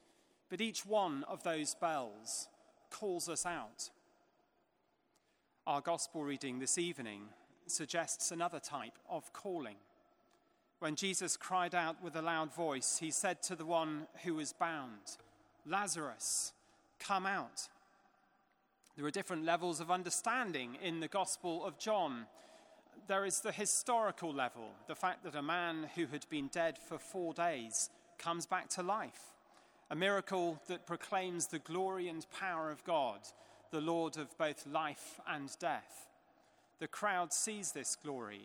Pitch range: 165-220 Hz